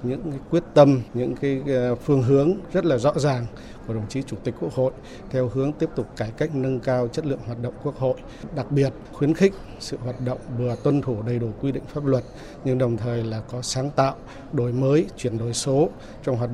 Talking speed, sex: 230 wpm, male